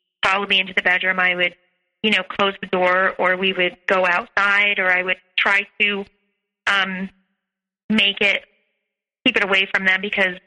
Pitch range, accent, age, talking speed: 195-260 Hz, American, 30-49, 180 wpm